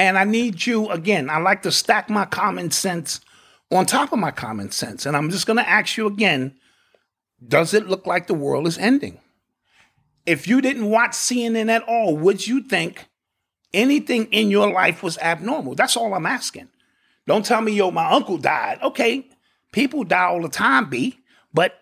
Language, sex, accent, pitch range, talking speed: English, male, American, 175-230 Hz, 190 wpm